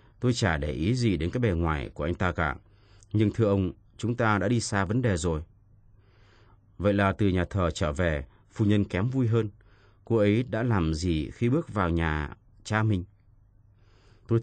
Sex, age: male, 30-49